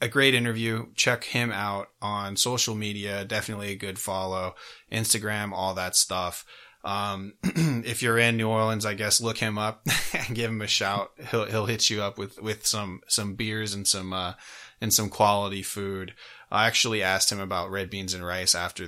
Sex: male